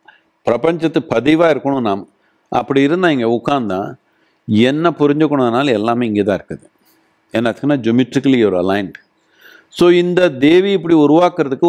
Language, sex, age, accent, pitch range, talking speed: Tamil, male, 50-69, native, 125-165 Hz, 120 wpm